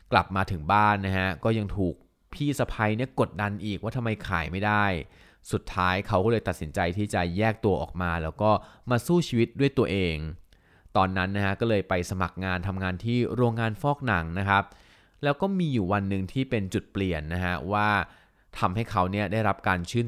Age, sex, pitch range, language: 20-39, male, 90-110 Hz, Thai